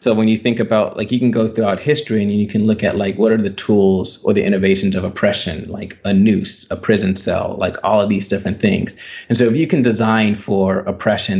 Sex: male